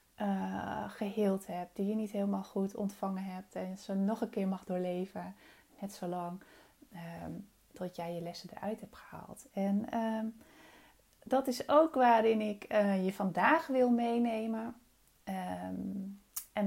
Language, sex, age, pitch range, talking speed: Dutch, female, 30-49, 185-230 Hz, 135 wpm